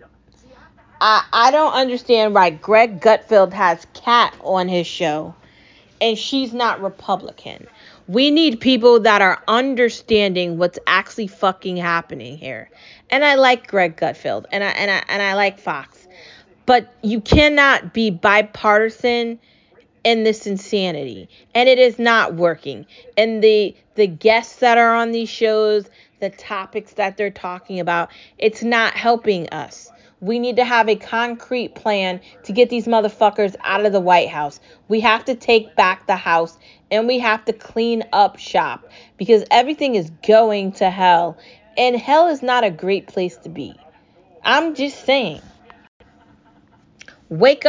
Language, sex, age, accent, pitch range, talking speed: English, female, 30-49, American, 190-240 Hz, 150 wpm